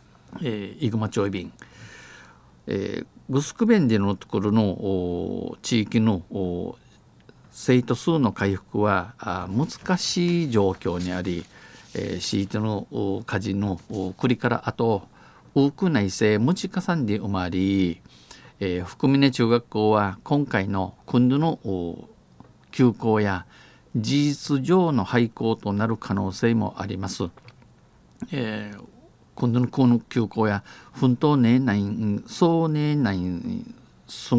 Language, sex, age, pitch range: Japanese, male, 50-69, 100-130 Hz